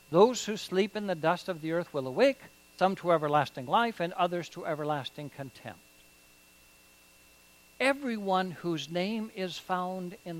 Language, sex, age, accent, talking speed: English, male, 60-79, American, 150 wpm